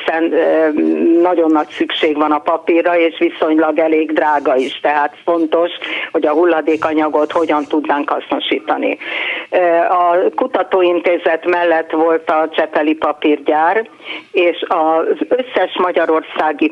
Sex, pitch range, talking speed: female, 155-170 Hz, 110 wpm